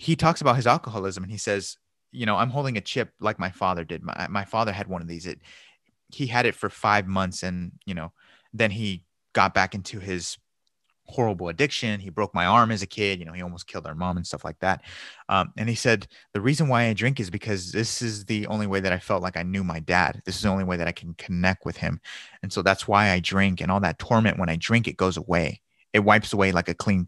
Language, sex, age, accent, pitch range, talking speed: English, male, 30-49, American, 95-120 Hz, 260 wpm